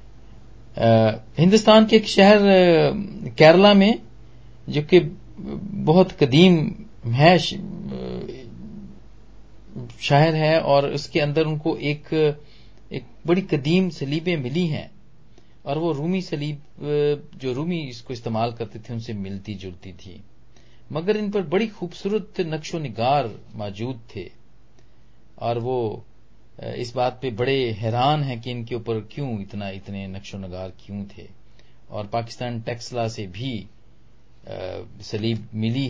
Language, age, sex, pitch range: Hindi, 40-59, male, 105-145 Hz